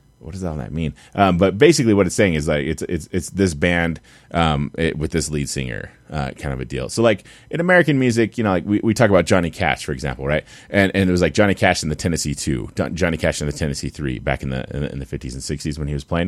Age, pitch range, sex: 30-49, 70-95 Hz, male